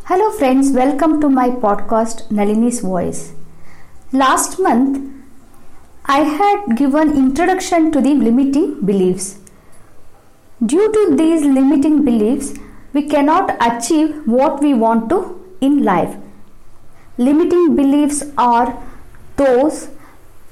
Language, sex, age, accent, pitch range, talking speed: English, female, 50-69, Indian, 225-300 Hz, 105 wpm